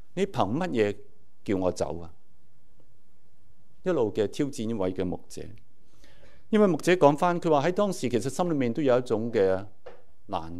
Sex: male